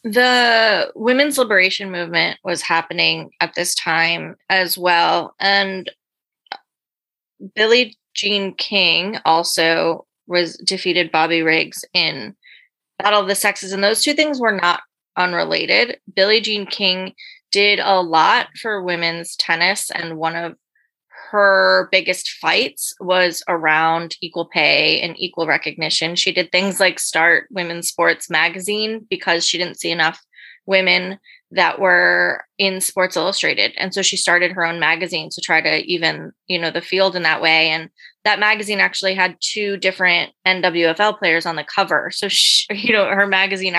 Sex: female